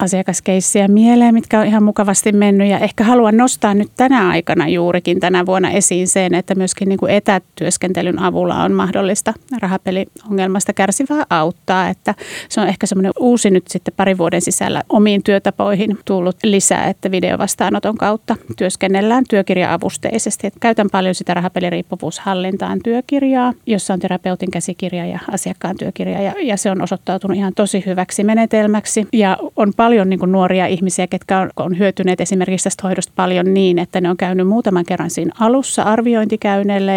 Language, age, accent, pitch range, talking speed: Finnish, 30-49, native, 185-210 Hz, 150 wpm